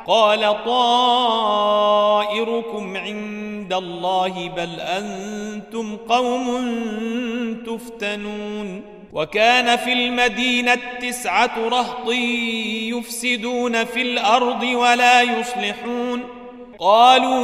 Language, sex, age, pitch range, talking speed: Arabic, male, 40-59, 210-245 Hz, 65 wpm